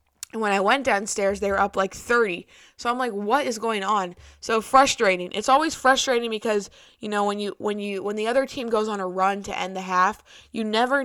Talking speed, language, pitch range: 235 wpm, English, 195-235 Hz